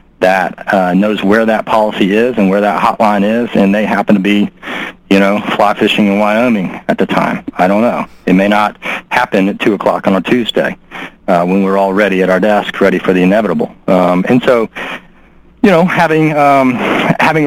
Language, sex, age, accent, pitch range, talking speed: English, male, 40-59, American, 95-115 Hz, 200 wpm